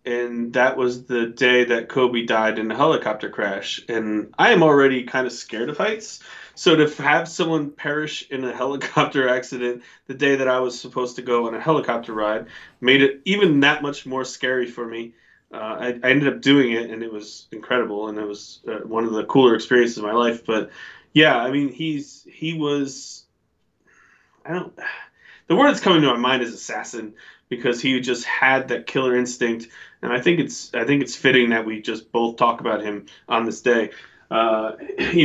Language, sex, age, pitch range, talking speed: English, male, 20-39, 115-135 Hz, 210 wpm